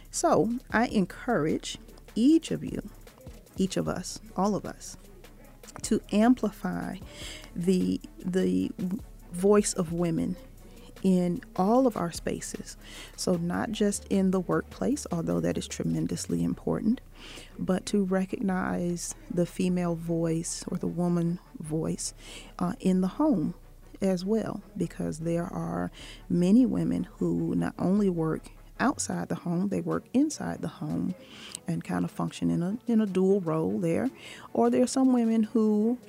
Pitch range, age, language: 160-210 Hz, 40-59, English